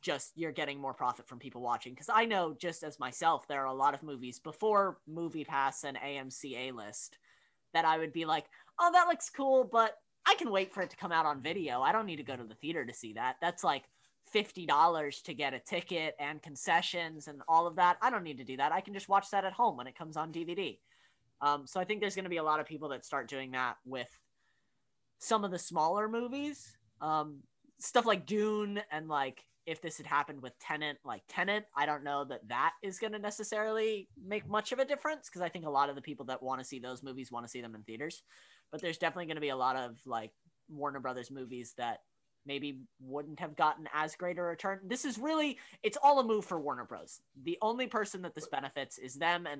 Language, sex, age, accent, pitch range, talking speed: English, female, 20-39, American, 130-190 Hz, 240 wpm